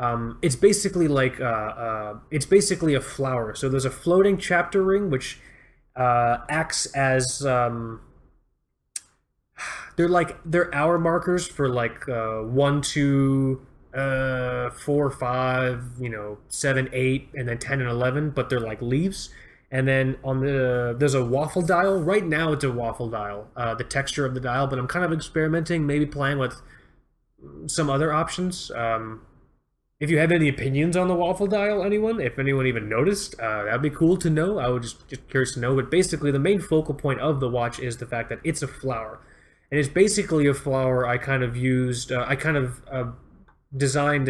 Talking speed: 185 wpm